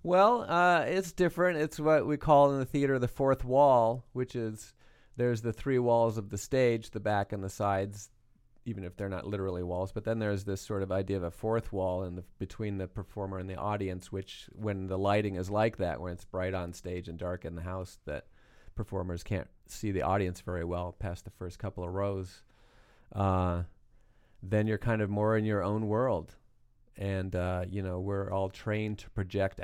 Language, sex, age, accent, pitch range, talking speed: English, male, 30-49, American, 95-110 Hz, 210 wpm